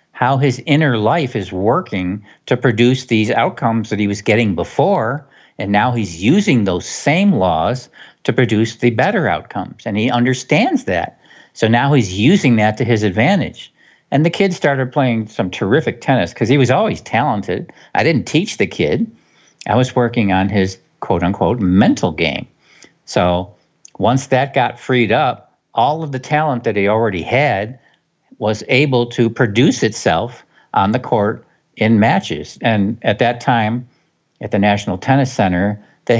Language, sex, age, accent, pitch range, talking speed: English, male, 50-69, American, 100-130 Hz, 165 wpm